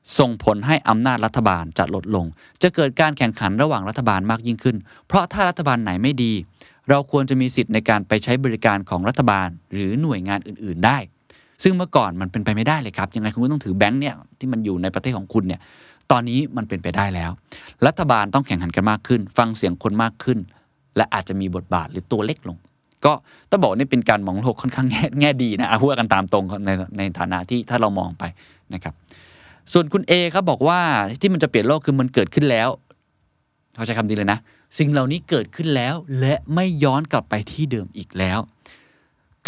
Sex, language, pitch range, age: male, Thai, 100-140 Hz, 20-39